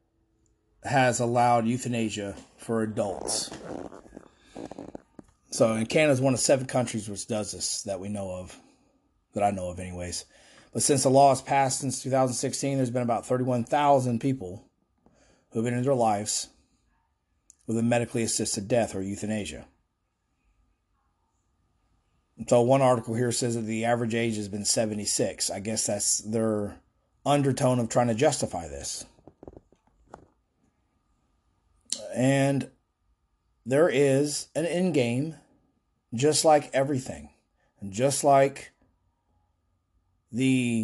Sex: male